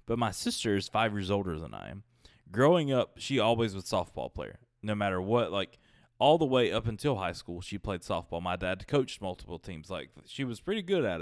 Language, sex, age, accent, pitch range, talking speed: English, male, 20-39, American, 95-120 Hz, 230 wpm